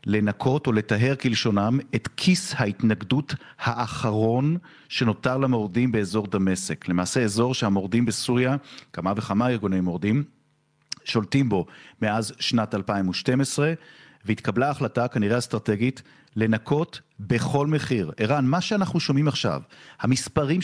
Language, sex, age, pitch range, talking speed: Hebrew, male, 40-59, 105-140 Hz, 110 wpm